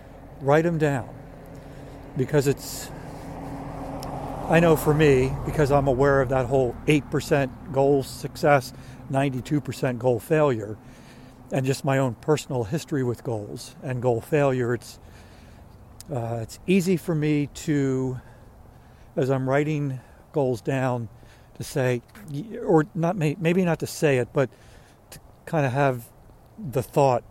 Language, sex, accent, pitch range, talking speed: English, male, American, 115-145 Hz, 130 wpm